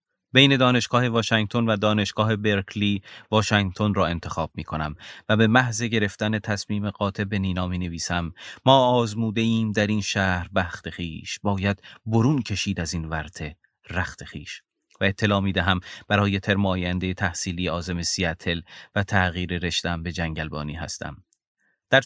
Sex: male